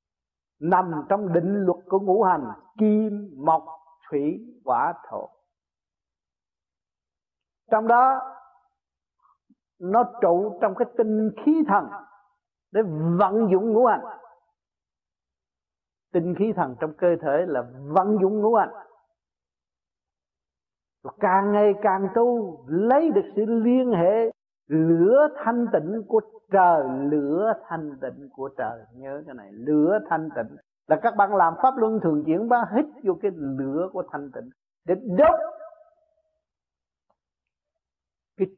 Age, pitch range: 60-79, 140-220 Hz